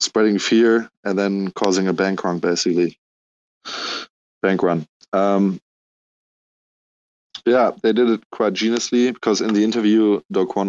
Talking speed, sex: 135 wpm, male